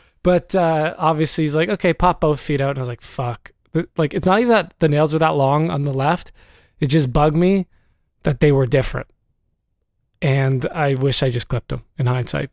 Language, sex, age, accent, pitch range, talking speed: English, male, 20-39, American, 130-165 Hz, 215 wpm